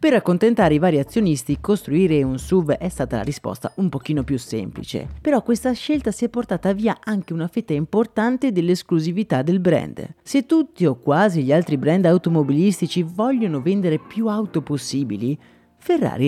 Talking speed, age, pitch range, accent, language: 160 wpm, 30-49, 145-215 Hz, native, Italian